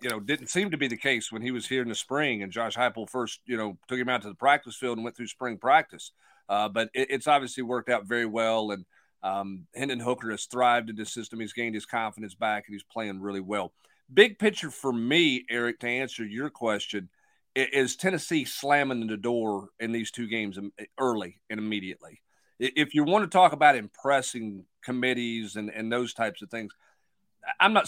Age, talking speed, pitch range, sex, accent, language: 40-59, 205 wpm, 110-135 Hz, male, American, English